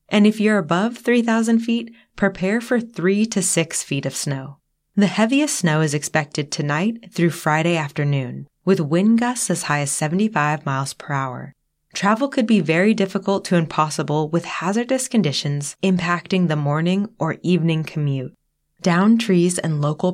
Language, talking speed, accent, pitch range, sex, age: English, 160 wpm, American, 150-195 Hz, female, 20-39